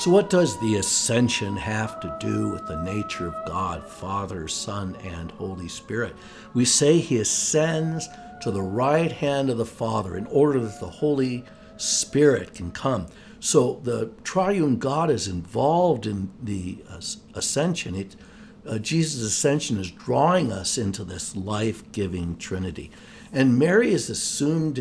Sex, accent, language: male, American, English